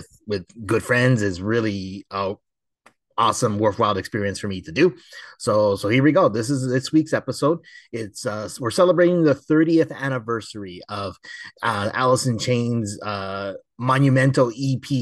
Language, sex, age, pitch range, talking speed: English, male, 30-49, 105-130 Hz, 145 wpm